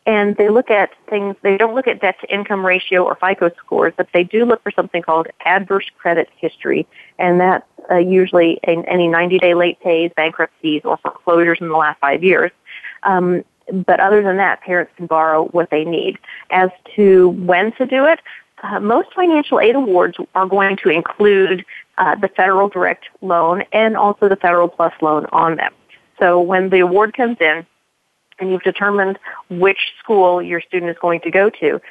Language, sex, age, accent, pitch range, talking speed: English, female, 40-59, American, 170-200 Hz, 190 wpm